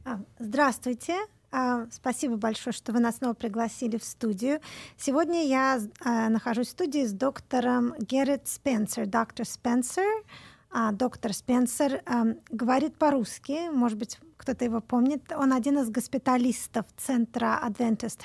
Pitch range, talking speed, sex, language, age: 230-275 Hz, 115 wpm, female, Russian, 20-39